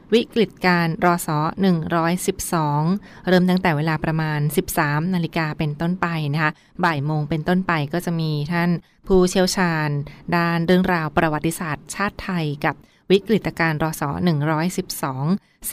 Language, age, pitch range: Thai, 20-39, 160-185 Hz